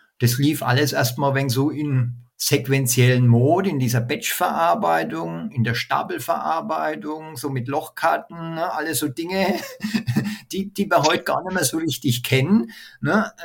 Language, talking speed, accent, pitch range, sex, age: German, 145 wpm, German, 120-165 Hz, male, 50-69